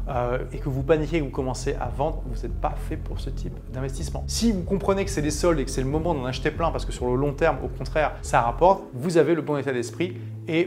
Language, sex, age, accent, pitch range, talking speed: French, male, 30-49, French, 125-155 Hz, 280 wpm